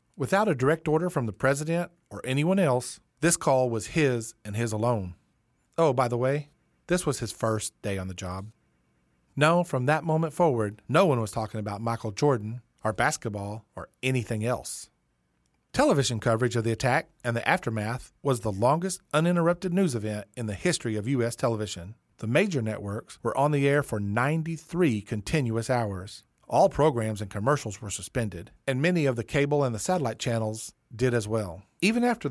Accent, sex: American, male